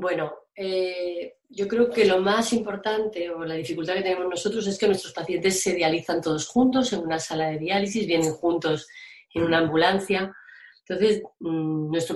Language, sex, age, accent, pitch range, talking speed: Spanish, female, 20-39, Spanish, 160-200 Hz, 170 wpm